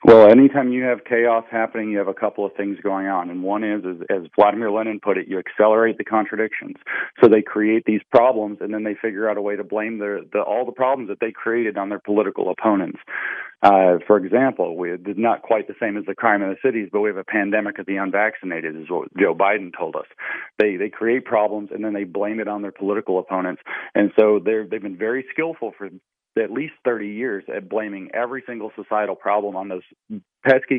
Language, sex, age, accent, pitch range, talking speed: English, male, 40-59, American, 100-115 Hz, 225 wpm